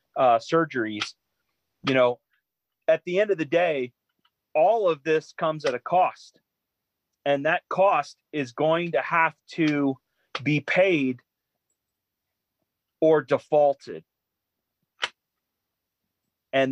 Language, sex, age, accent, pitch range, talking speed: English, male, 30-49, American, 130-160 Hz, 110 wpm